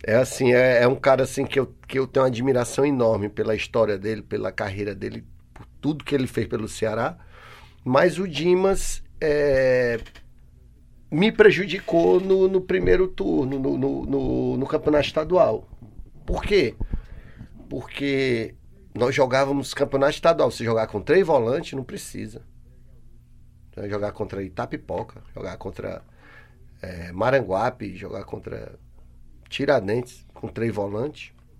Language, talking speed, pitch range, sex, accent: Portuguese, 135 wpm, 105-165 Hz, male, Brazilian